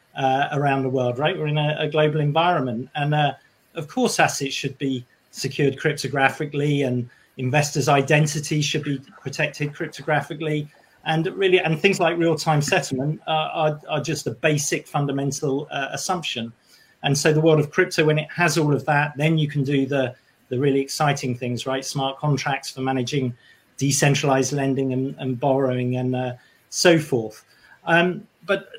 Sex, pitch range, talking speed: male, 130-155 Hz, 165 wpm